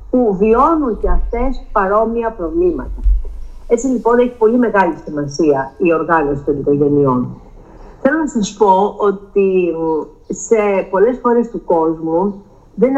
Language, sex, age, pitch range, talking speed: Greek, female, 50-69, 165-235 Hz, 125 wpm